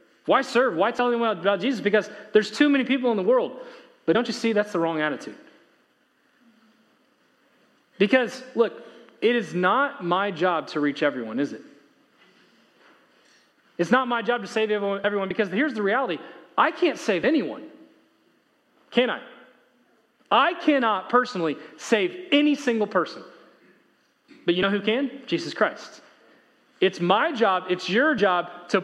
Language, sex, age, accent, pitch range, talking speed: English, male, 30-49, American, 210-285 Hz, 150 wpm